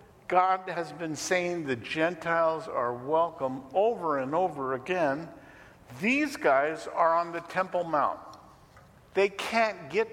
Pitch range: 135-185 Hz